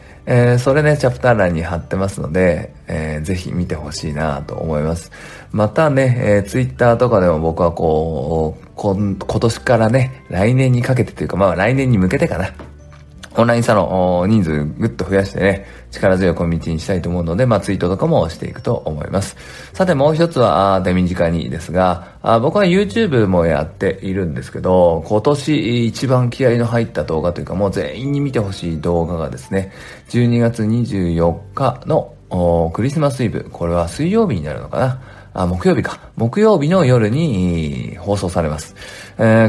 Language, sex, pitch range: Japanese, male, 85-115 Hz